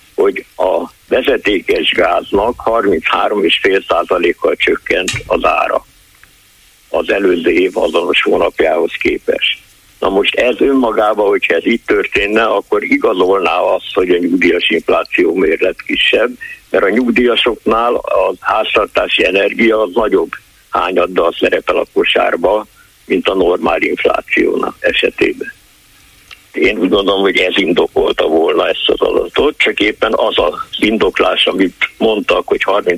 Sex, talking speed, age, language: male, 120 wpm, 60-79, Hungarian